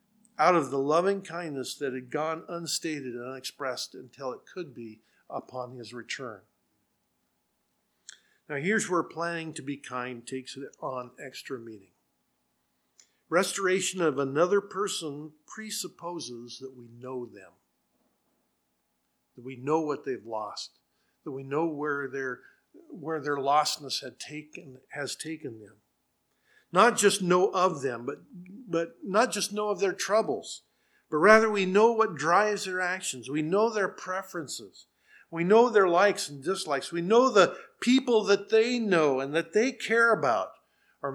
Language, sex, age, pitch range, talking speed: English, male, 50-69, 130-190 Hz, 150 wpm